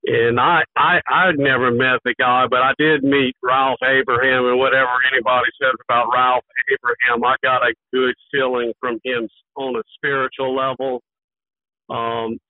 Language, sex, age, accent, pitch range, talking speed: English, male, 50-69, American, 130-145 Hz, 160 wpm